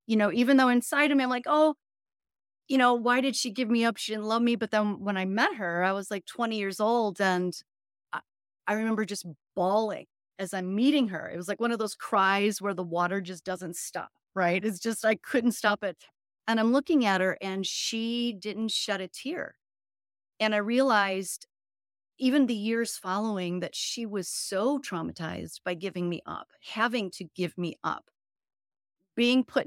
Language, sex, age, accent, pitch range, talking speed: English, female, 30-49, American, 180-225 Hz, 200 wpm